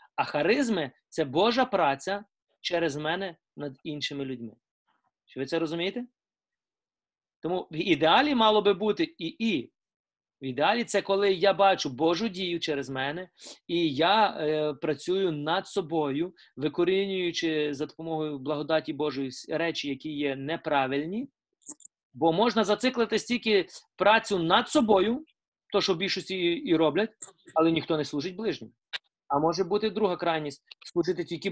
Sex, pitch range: male, 150-195 Hz